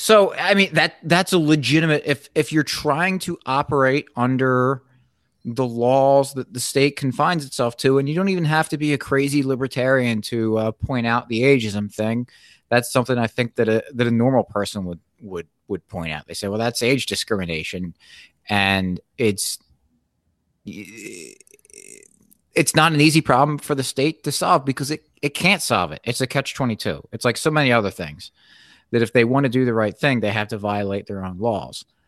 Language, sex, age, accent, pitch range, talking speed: English, male, 30-49, American, 100-145 Hz, 195 wpm